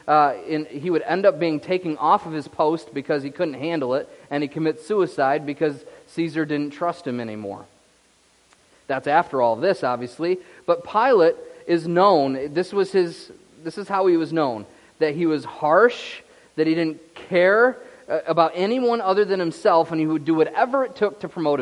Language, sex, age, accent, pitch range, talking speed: English, male, 40-59, American, 145-180 Hz, 185 wpm